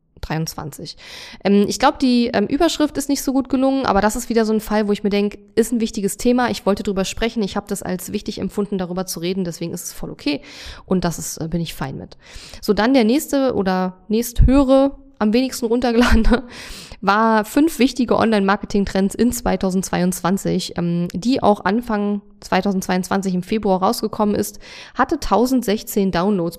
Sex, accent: female, German